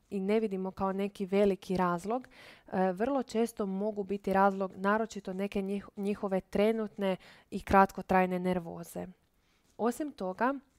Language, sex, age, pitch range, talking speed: Croatian, female, 20-39, 190-225 Hz, 115 wpm